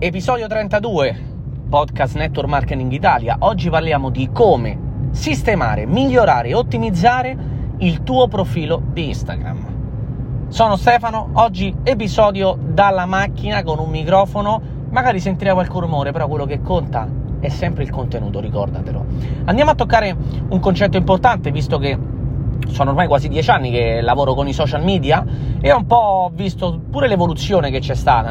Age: 30-49